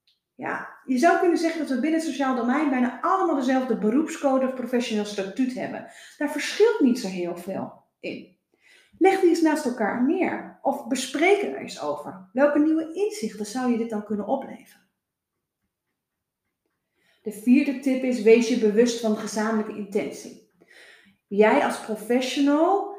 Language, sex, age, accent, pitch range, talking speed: Dutch, female, 30-49, Dutch, 220-315 Hz, 155 wpm